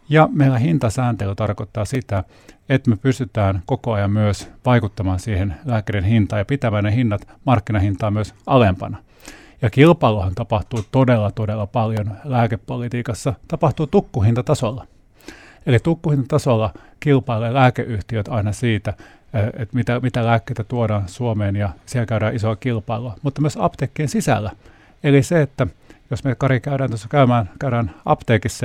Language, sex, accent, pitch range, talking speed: Finnish, male, native, 110-135 Hz, 130 wpm